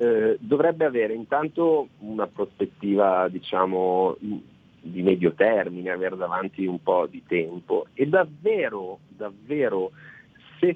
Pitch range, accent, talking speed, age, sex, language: 100-145 Hz, native, 105 wpm, 40-59, male, Italian